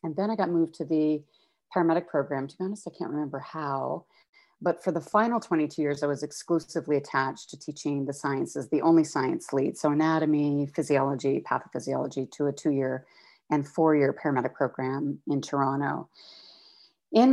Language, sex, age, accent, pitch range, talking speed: English, female, 40-59, American, 140-175 Hz, 165 wpm